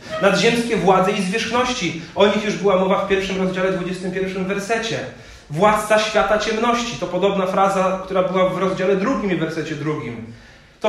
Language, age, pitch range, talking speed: Polish, 40-59, 145-195 Hz, 160 wpm